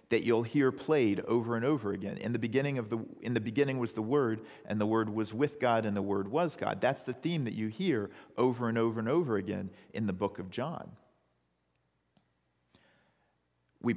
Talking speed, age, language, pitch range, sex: 190 wpm, 40-59, English, 90-125 Hz, male